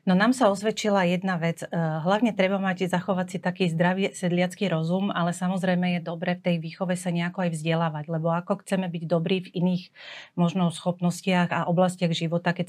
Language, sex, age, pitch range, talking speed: Slovak, female, 40-59, 165-185 Hz, 185 wpm